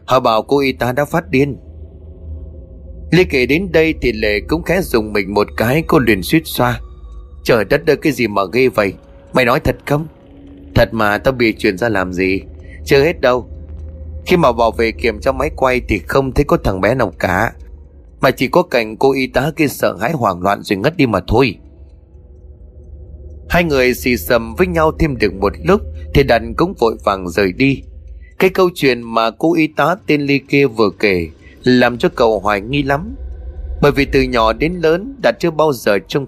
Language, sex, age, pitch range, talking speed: Vietnamese, male, 20-39, 95-150 Hz, 210 wpm